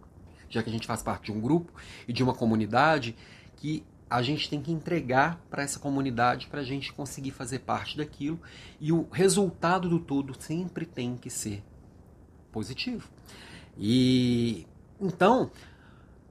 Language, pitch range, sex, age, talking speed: Portuguese, 110-150 Hz, male, 30-49, 150 wpm